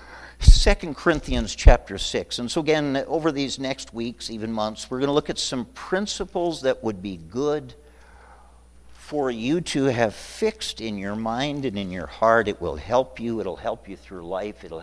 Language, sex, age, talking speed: English, male, 50-69, 185 wpm